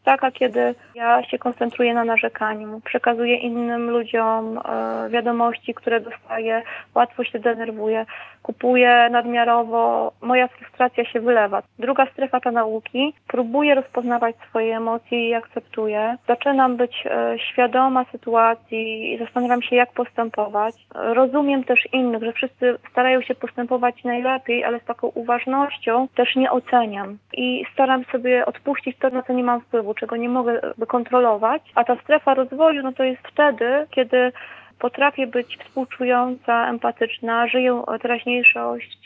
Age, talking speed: 20-39, 135 wpm